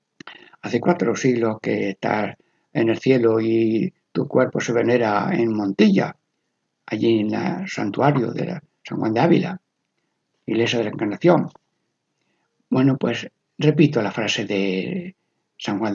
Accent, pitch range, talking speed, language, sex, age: Spanish, 115-175 Hz, 140 wpm, Spanish, male, 60-79